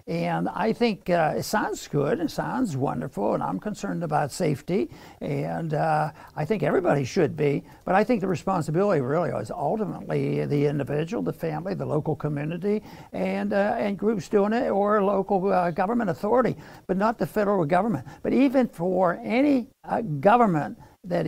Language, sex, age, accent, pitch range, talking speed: English, male, 60-79, American, 165-215 Hz, 170 wpm